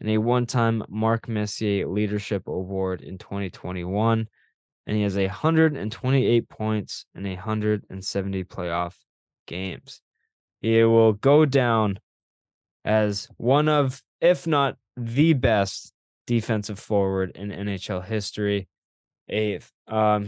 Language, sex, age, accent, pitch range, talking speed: English, male, 10-29, American, 100-115 Hz, 110 wpm